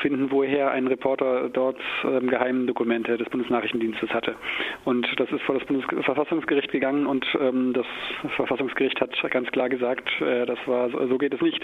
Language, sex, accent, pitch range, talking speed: German, male, German, 130-150 Hz, 170 wpm